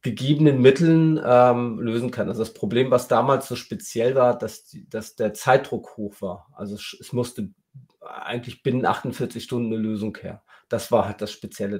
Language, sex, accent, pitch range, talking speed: German, male, German, 105-125 Hz, 180 wpm